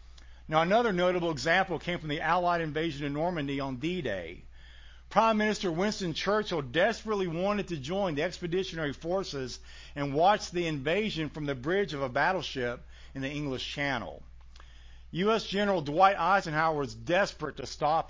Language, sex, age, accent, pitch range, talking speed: English, male, 50-69, American, 125-185 Hz, 155 wpm